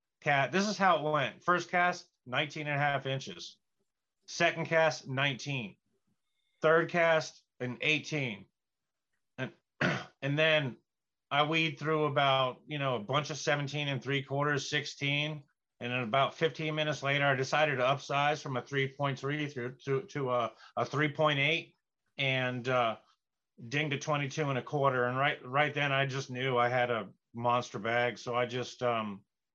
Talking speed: 165 wpm